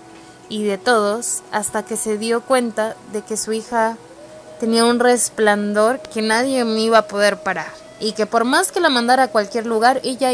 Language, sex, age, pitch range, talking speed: Spanish, female, 20-39, 210-260 Hz, 190 wpm